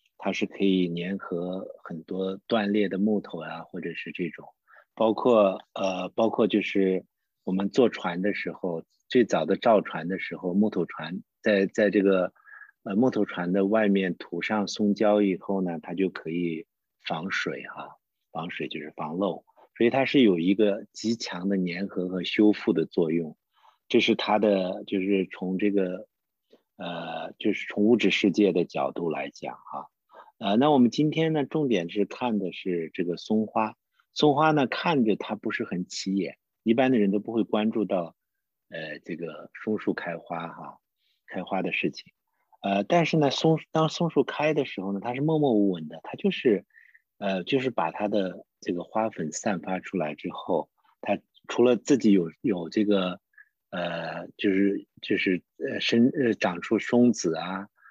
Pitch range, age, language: 95-115 Hz, 50-69, English